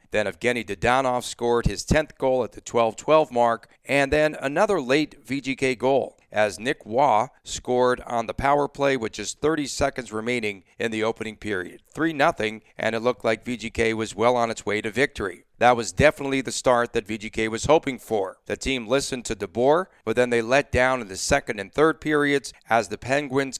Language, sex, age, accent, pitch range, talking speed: English, male, 40-59, American, 115-135 Hz, 195 wpm